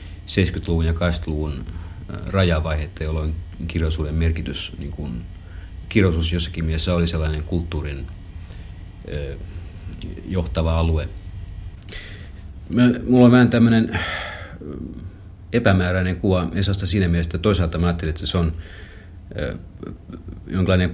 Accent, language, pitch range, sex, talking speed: native, Finnish, 80-95 Hz, male, 95 wpm